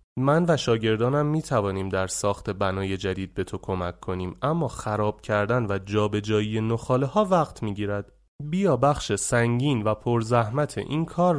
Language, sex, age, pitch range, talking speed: Persian, male, 30-49, 105-150 Hz, 160 wpm